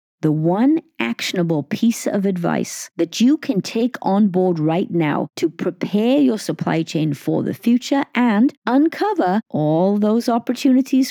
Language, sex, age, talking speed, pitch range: English, female, 50-69, 145 wpm, 165-255 Hz